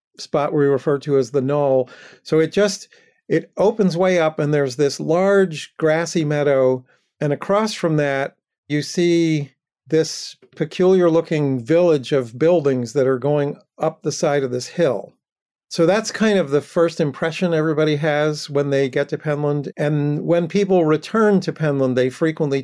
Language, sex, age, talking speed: English, male, 50-69, 165 wpm